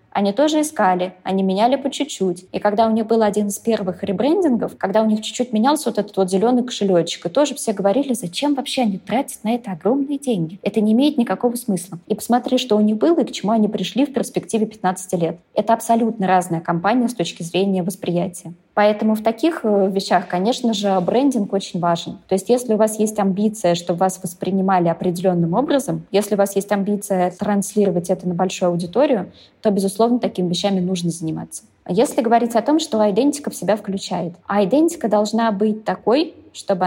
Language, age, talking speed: Russian, 20-39, 190 wpm